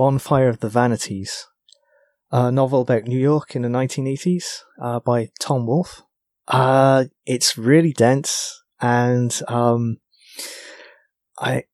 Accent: British